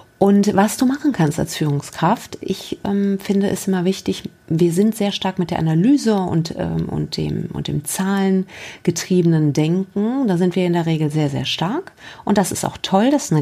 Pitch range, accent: 155-195 Hz, German